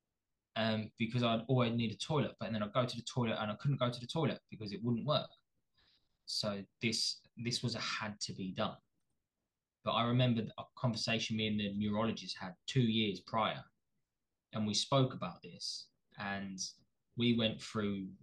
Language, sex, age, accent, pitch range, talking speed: English, male, 20-39, British, 100-115 Hz, 190 wpm